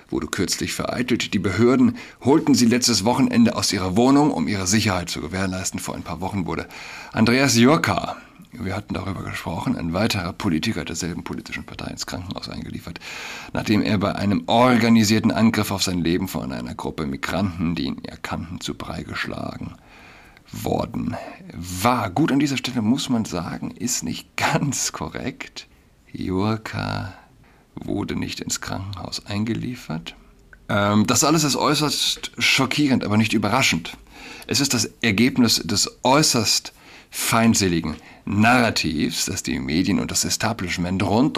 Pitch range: 90-115 Hz